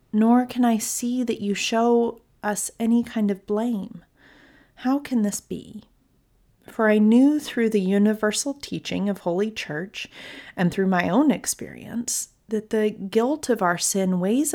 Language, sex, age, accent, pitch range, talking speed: English, female, 30-49, American, 195-235 Hz, 155 wpm